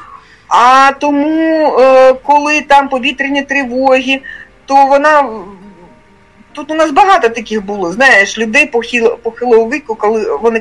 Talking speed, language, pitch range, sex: 115 wpm, Ukrainian, 225-295 Hz, female